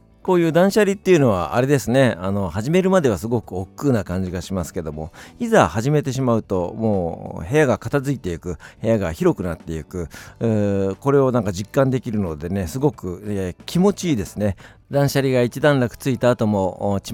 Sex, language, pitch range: male, Japanese, 90-125 Hz